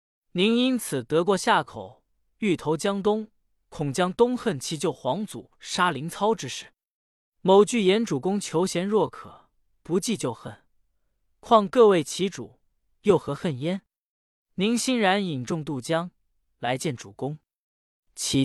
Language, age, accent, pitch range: Chinese, 20-39, native, 130-210 Hz